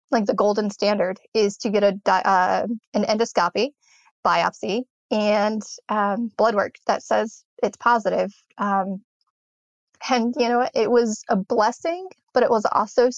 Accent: American